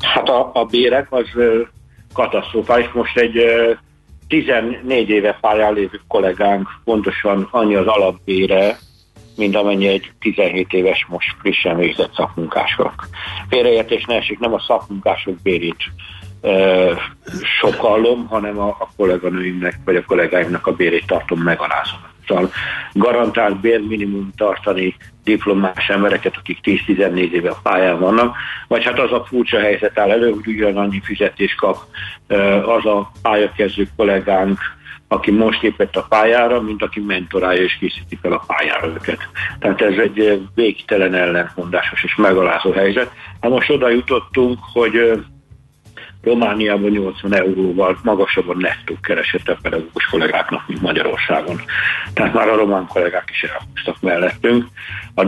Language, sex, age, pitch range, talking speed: Hungarian, male, 60-79, 95-115 Hz, 130 wpm